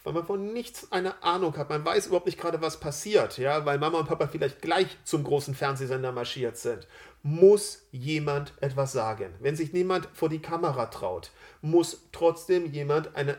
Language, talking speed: German, 185 wpm